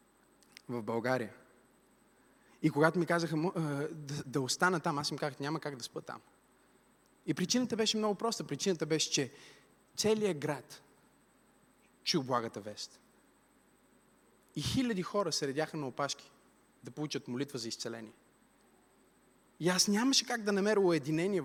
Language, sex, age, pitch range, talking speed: Bulgarian, male, 30-49, 155-220 Hz, 140 wpm